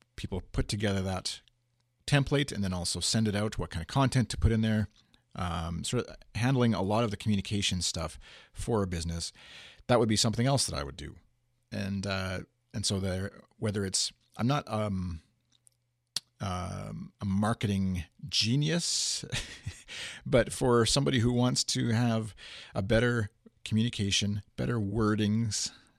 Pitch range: 90-120 Hz